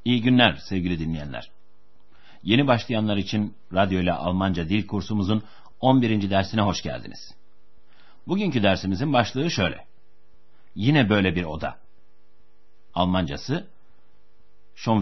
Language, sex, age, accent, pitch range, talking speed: Turkish, male, 60-79, native, 90-120 Hz, 105 wpm